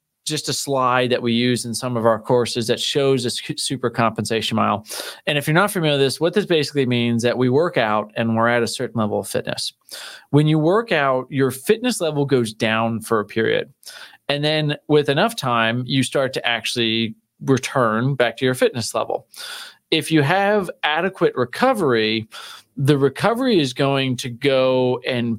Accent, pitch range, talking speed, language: American, 120-145 Hz, 190 wpm, English